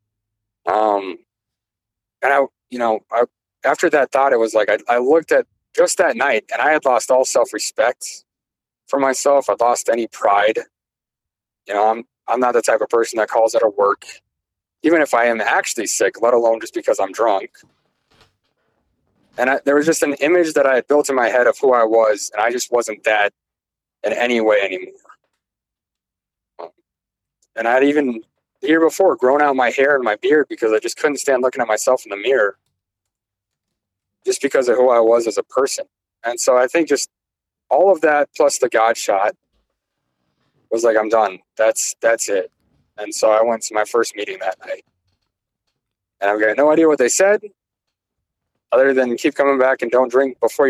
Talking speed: 190 wpm